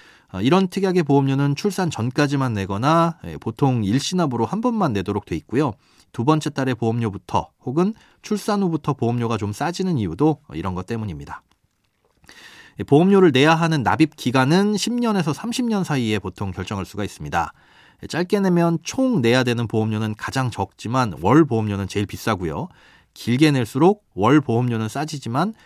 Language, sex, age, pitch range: Korean, male, 30-49, 105-160 Hz